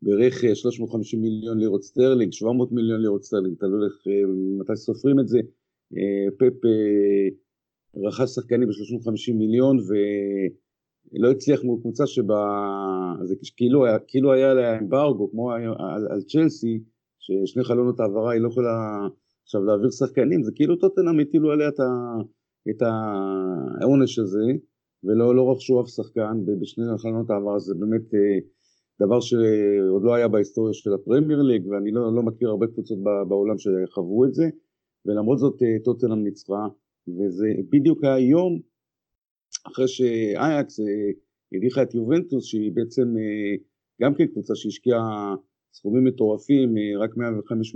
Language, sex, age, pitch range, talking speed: Hebrew, male, 50-69, 100-125 Hz, 125 wpm